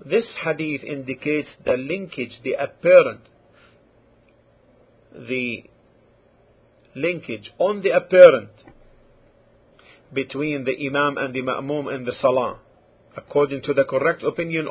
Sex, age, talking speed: male, 50-69, 105 wpm